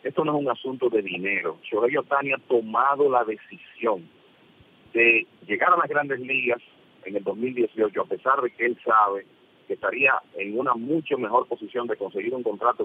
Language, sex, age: English, male, 40-59